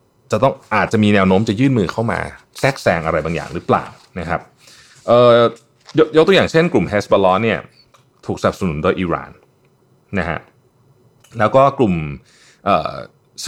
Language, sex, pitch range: Thai, male, 90-130 Hz